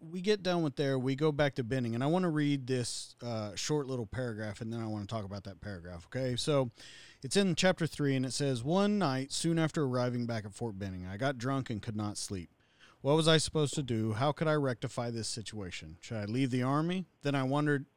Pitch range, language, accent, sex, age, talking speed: 110-150 Hz, English, American, male, 40-59, 245 wpm